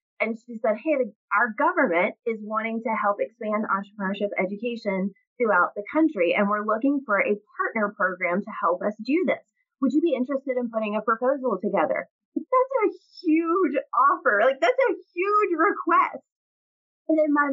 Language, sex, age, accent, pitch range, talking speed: English, female, 30-49, American, 205-290 Hz, 170 wpm